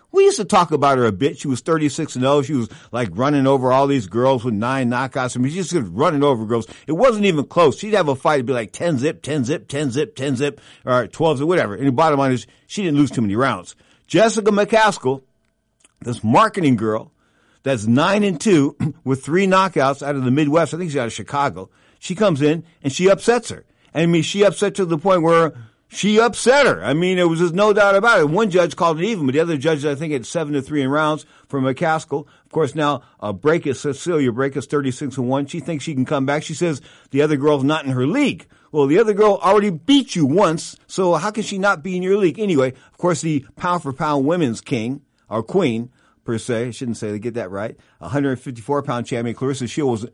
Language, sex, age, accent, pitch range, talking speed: English, male, 60-79, American, 130-170 Hz, 240 wpm